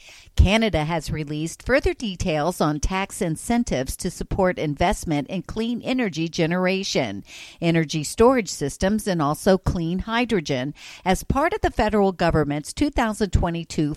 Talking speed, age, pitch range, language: 125 wpm, 50-69, 160-215 Hz, English